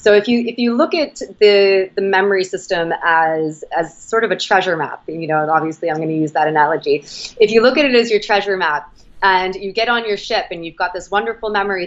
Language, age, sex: English, 20-39, female